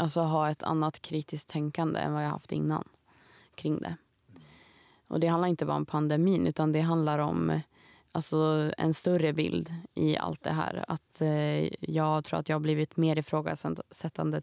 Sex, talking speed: female, 165 wpm